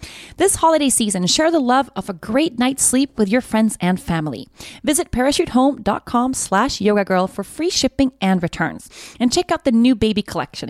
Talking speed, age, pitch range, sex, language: 185 wpm, 30-49, 185-260 Hz, female, English